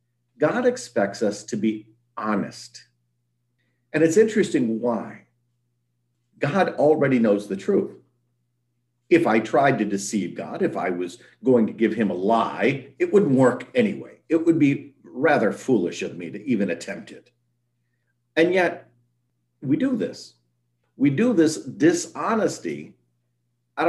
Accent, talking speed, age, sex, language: American, 140 wpm, 50-69, male, English